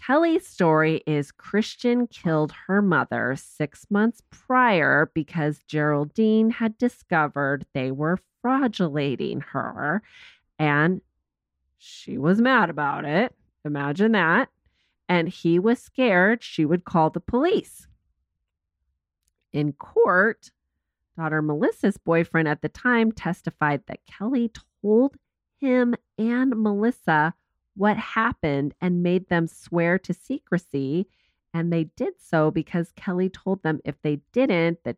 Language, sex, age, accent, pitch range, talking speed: English, female, 30-49, American, 145-205 Hz, 120 wpm